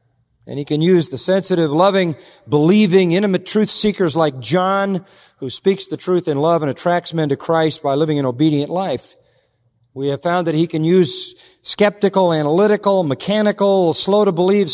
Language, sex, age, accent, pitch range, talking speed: English, male, 40-59, American, 150-200 Hz, 165 wpm